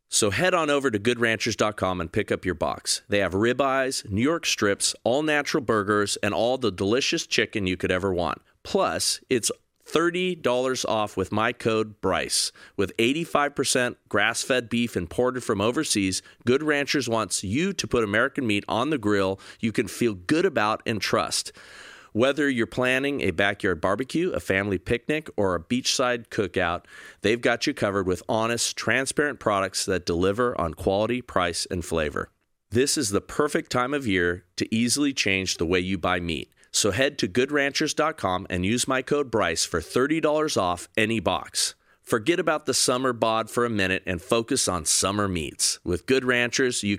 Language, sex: English, male